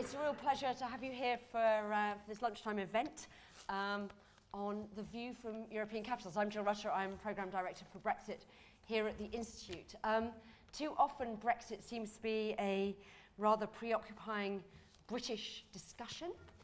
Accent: British